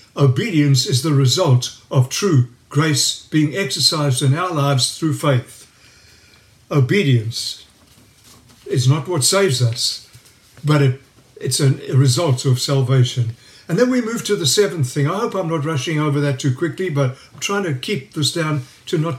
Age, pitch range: 60-79, 130-180 Hz